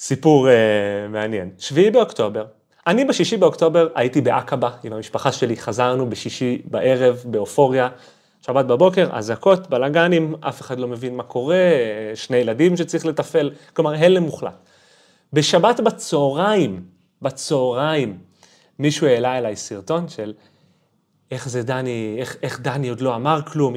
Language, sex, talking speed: Hebrew, male, 130 wpm